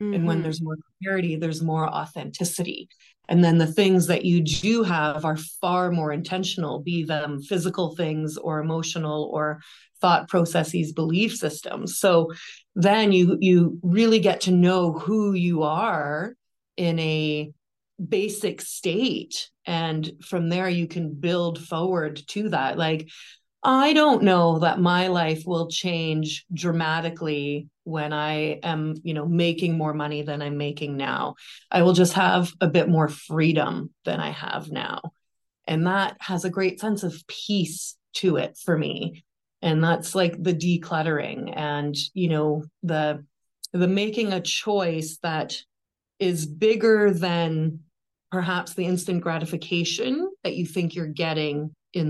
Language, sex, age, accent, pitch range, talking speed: English, female, 30-49, American, 155-180 Hz, 145 wpm